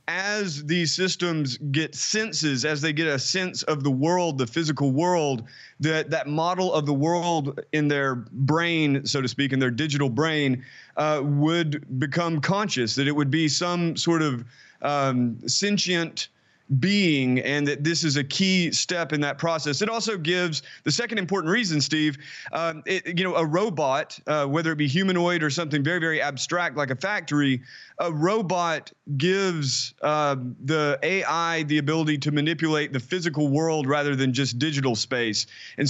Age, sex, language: 30-49, male, English